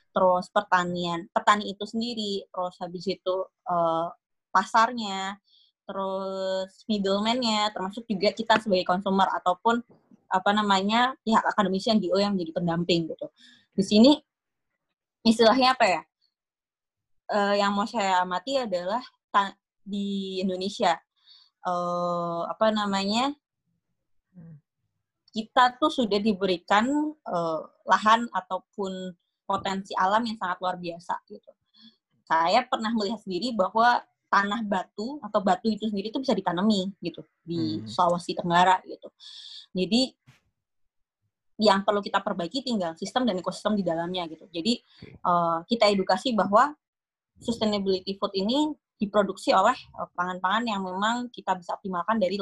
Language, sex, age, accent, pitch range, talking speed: Indonesian, female, 20-39, native, 180-220 Hz, 120 wpm